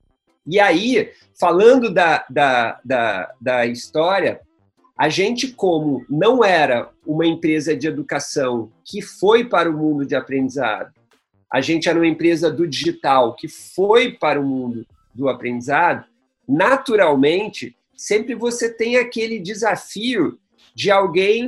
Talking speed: 130 wpm